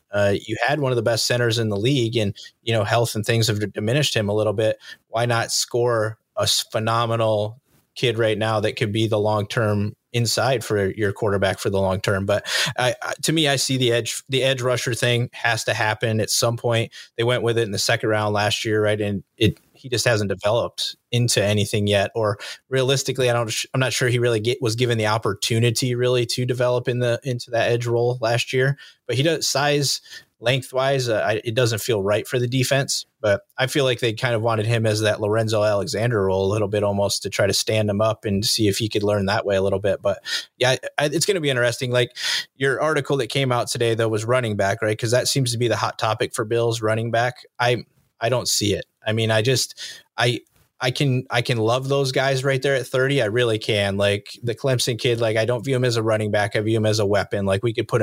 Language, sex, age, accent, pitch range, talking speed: English, male, 20-39, American, 110-125 Hz, 250 wpm